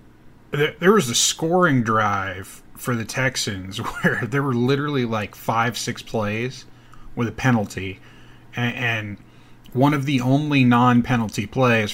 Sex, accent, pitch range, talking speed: male, American, 105-130 Hz, 130 wpm